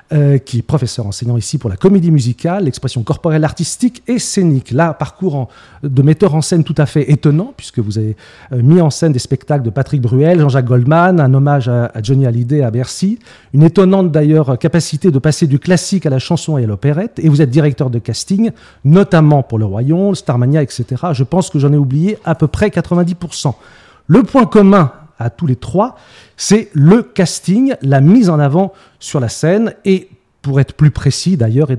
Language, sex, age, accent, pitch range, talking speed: French, male, 40-59, French, 135-180 Hz, 205 wpm